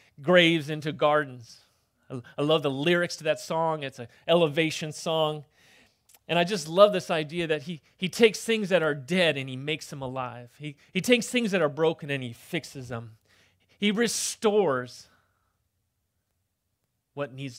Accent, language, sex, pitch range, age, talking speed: American, English, male, 120-175 Hz, 30-49, 165 wpm